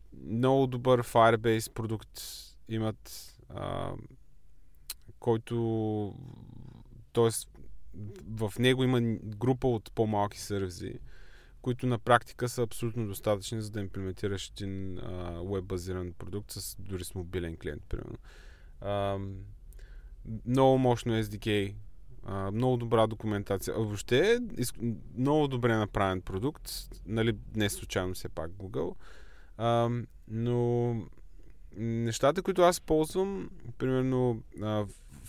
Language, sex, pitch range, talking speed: Bulgarian, male, 100-120 Hz, 105 wpm